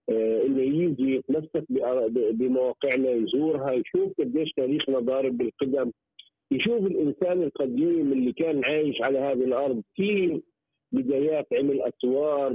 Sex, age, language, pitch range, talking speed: male, 50-69, Arabic, 150-205 Hz, 110 wpm